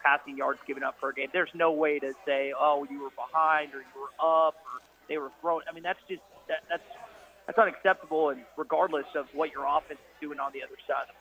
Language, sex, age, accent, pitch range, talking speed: English, male, 30-49, American, 145-190 Hz, 245 wpm